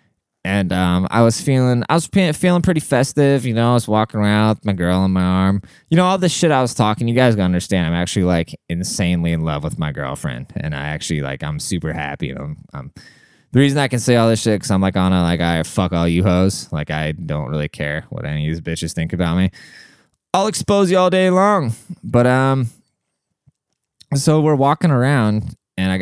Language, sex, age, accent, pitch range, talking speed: English, male, 20-39, American, 90-125 Hz, 225 wpm